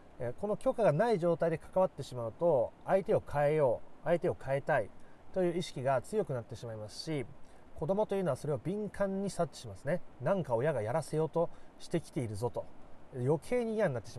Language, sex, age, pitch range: Japanese, male, 30-49, 125-185 Hz